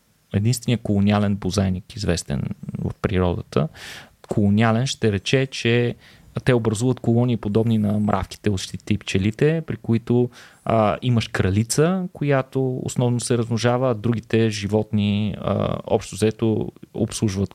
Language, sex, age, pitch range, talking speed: Bulgarian, male, 20-39, 105-130 Hz, 120 wpm